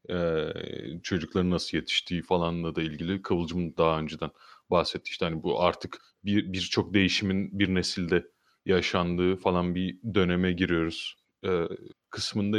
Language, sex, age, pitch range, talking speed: Turkish, male, 30-49, 95-115 Hz, 130 wpm